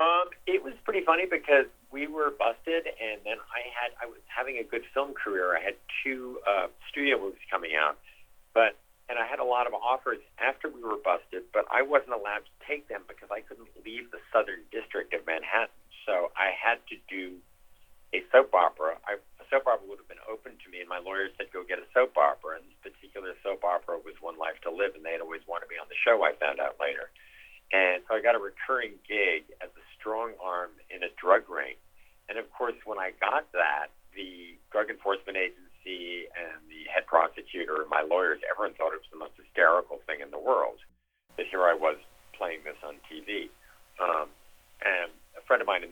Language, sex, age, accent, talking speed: English, male, 50-69, American, 215 wpm